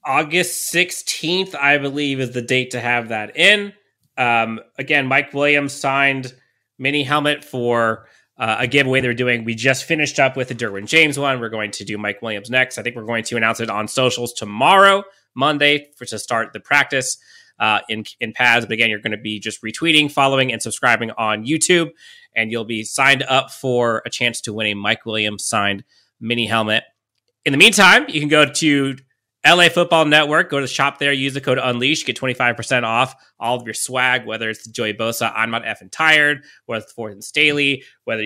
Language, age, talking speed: English, 30-49, 200 wpm